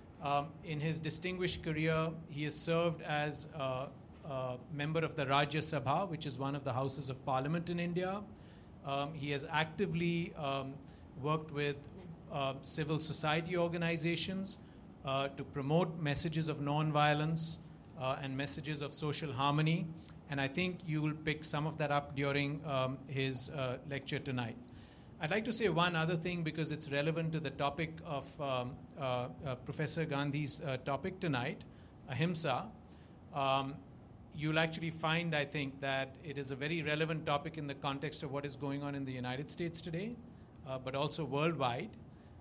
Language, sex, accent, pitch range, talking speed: English, male, Indian, 135-160 Hz, 170 wpm